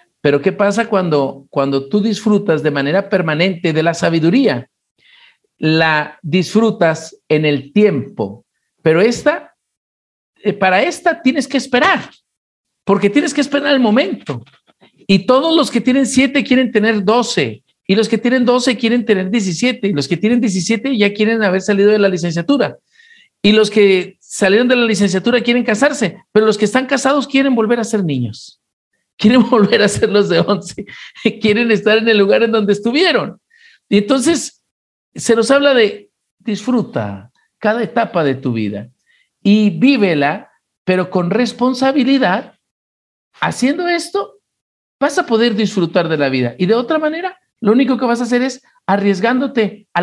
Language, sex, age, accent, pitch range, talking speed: Spanish, male, 50-69, Mexican, 180-255 Hz, 160 wpm